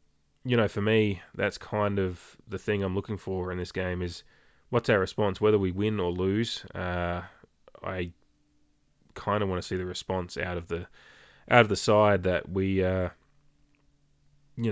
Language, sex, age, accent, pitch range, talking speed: English, male, 20-39, Australian, 90-105 Hz, 180 wpm